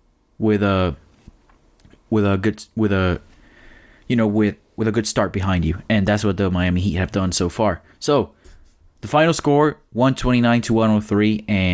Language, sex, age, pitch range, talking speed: English, male, 20-39, 90-115 Hz, 170 wpm